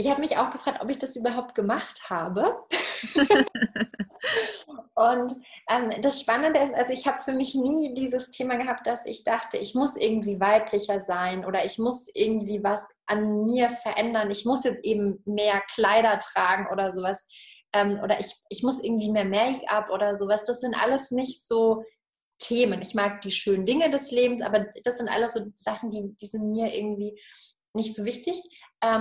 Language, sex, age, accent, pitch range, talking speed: German, female, 20-39, German, 205-245 Hz, 180 wpm